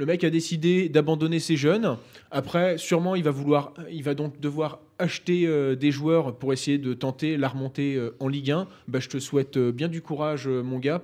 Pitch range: 115-145 Hz